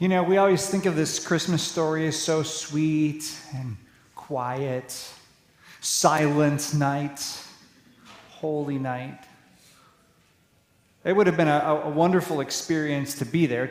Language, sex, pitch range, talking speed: English, male, 140-170 Hz, 125 wpm